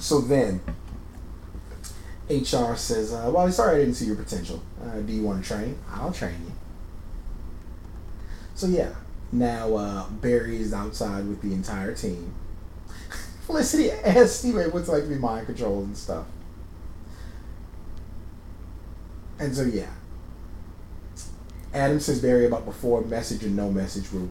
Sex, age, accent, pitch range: male, 30-49, American, 85-125 Hz